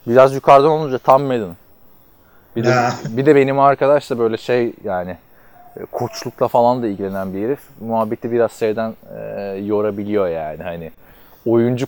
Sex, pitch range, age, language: male, 95-120 Hz, 20-39, Turkish